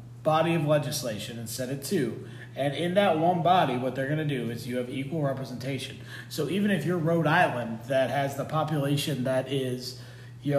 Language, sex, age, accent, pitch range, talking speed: English, male, 30-49, American, 125-160 Hz, 200 wpm